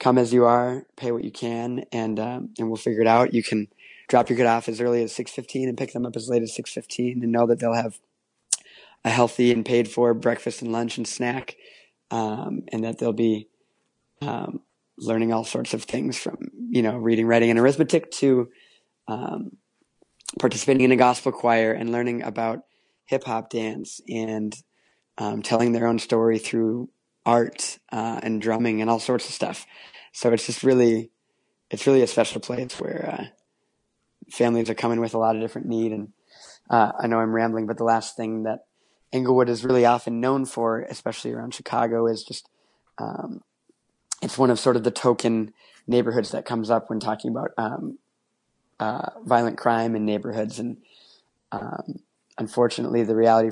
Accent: American